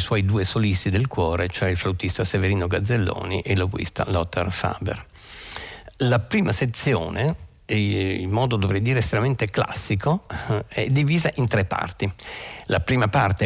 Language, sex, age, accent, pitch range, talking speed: Italian, male, 50-69, native, 100-130 Hz, 140 wpm